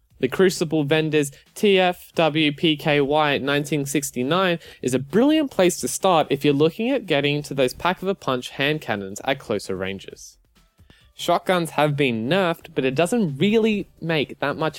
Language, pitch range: English, 135-185 Hz